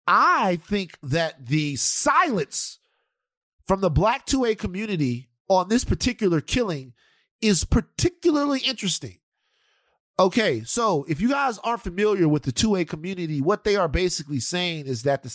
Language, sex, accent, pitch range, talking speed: English, male, American, 140-205 Hz, 140 wpm